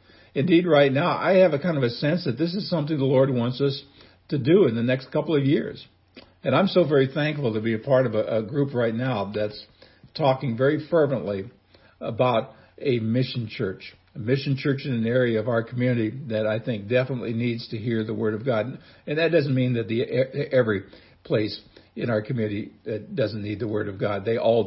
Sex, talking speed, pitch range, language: male, 215 wpm, 115-140 Hz, English